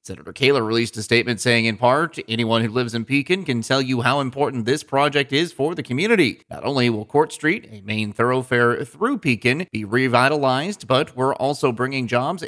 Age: 30-49